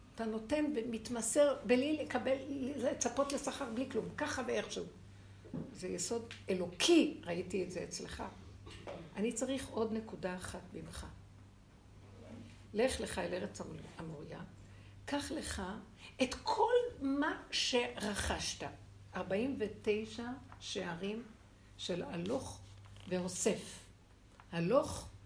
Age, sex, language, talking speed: 60-79, female, Hebrew, 95 wpm